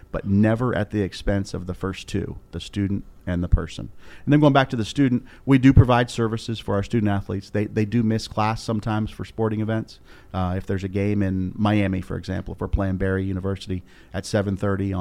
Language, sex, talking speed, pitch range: English, male, 210 wpm, 95-110 Hz